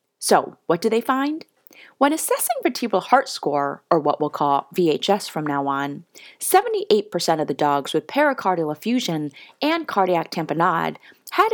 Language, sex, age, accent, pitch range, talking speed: English, female, 30-49, American, 155-245 Hz, 150 wpm